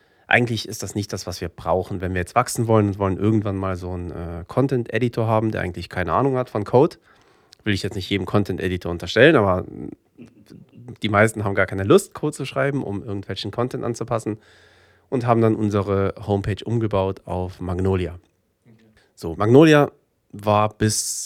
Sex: male